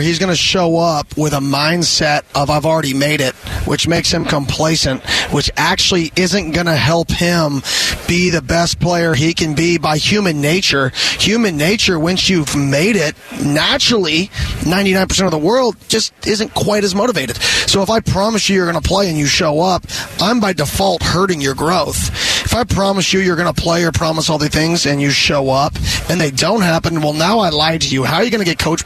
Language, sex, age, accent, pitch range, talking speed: English, male, 30-49, American, 155-190 Hz, 215 wpm